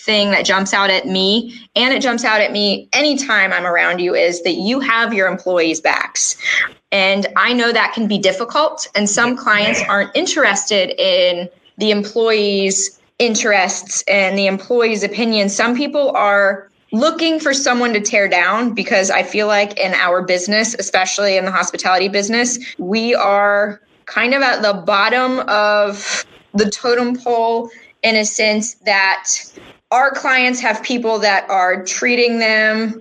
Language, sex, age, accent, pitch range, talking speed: English, female, 10-29, American, 195-240 Hz, 160 wpm